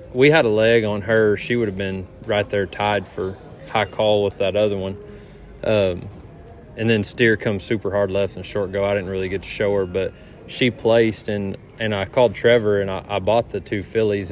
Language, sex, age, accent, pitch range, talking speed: English, male, 20-39, American, 95-115 Hz, 220 wpm